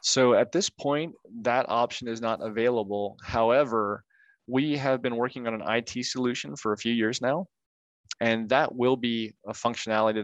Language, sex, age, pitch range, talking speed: English, male, 20-39, 110-120 Hz, 170 wpm